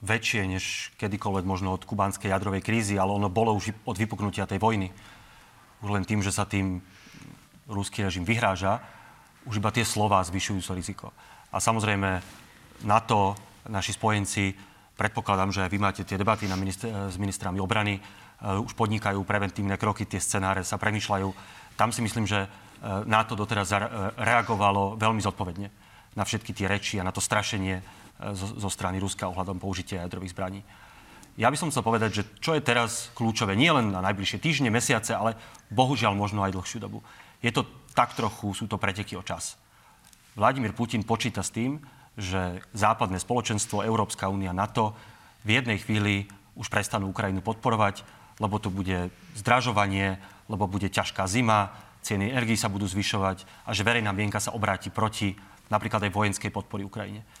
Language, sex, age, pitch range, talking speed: Slovak, male, 30-49, 95-110 Hz, 165 wpm